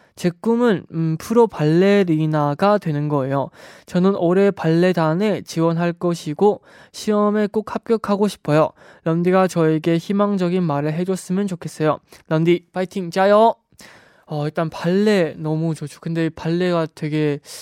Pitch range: 155-195 Hz